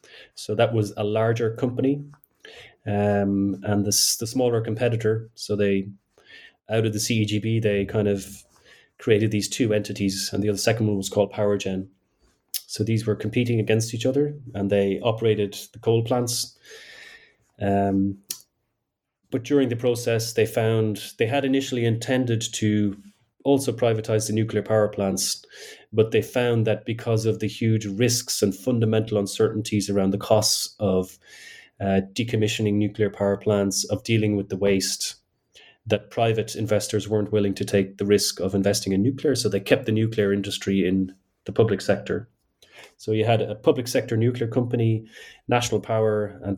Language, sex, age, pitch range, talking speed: English, male, 30-49, 100-115 Hz, 160 wpm